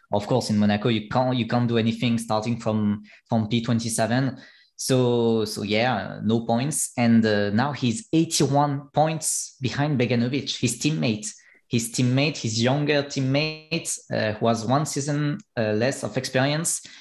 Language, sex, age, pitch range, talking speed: English, male, 20-39, 120-150 Hz, 150 wpm